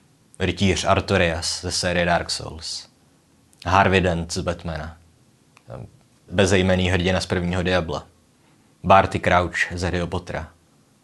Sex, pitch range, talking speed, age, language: male, 85-95 Hz, 110 wpm, 20-39, Czech